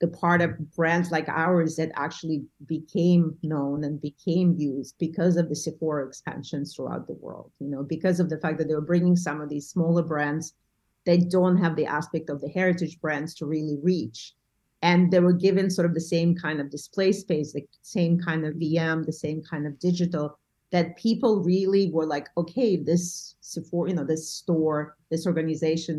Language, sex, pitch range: English, female, 150-180 Hz